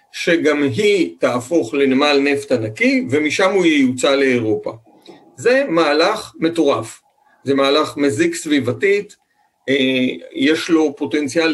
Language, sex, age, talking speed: Hebrew, male, 50-69, 105 wpm